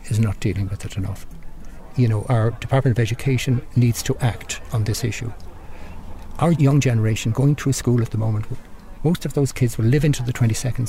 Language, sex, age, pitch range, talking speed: English, male, 60-79, 110-135 Hz, 200 wpm